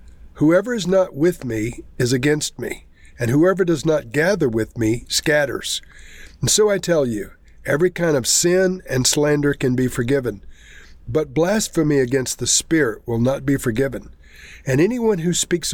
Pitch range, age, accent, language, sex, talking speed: 125-170 Hz, 50-69, American, English, male, 165 wpm